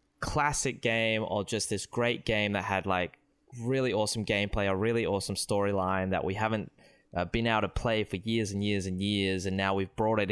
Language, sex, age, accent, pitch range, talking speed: English, male, 20-39, Australian, 95-120 Hz, 210 wpm